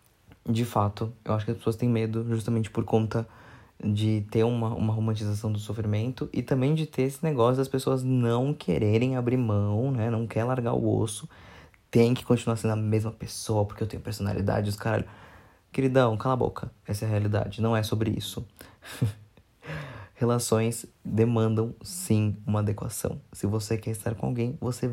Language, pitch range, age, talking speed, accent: Portuguese, 105-120 Hz, 20-39, 180 wpm, Brazilian